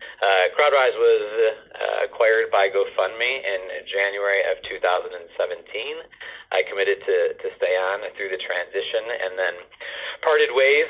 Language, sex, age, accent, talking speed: English, male, 30-49, American, 130 wpm